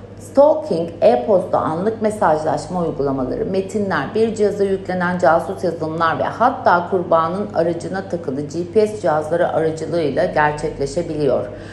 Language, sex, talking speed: Turkish, female, 100 wpm